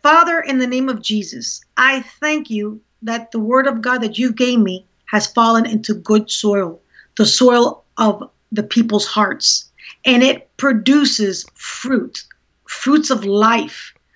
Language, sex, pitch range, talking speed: English, female, 215-275 Hz, 155 wpm